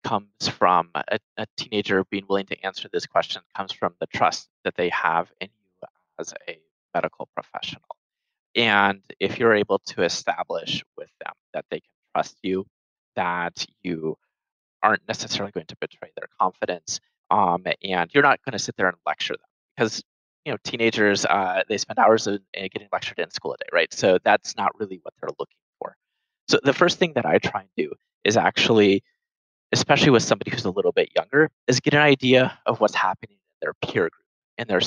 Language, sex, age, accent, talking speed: English, male, 20-39, American, 195 wpm